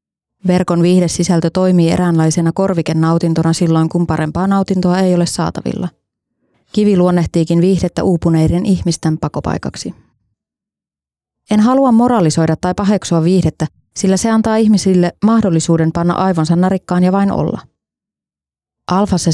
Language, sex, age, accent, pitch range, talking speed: Finnish, female, 20-39, native, 160-185 Hz, 115 wpm